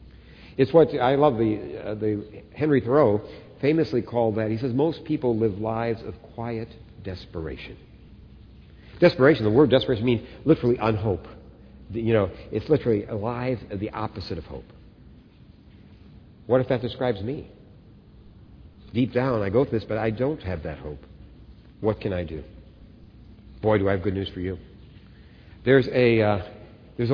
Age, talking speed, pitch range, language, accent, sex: 60-79, 160 wpm, 95-130 Hz, English, American, male